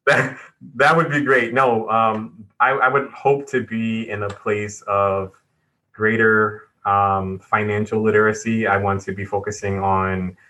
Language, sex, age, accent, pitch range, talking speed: English, male, 20-39, American, 100-115 Hz, 155 wpm